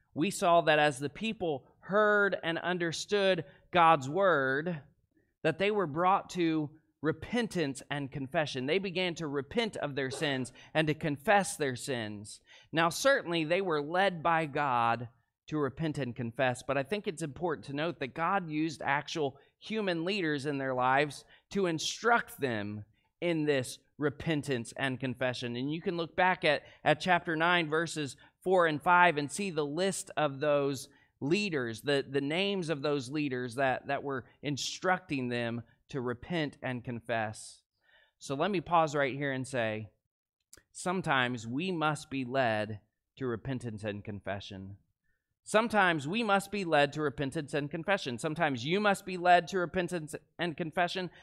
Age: 30-49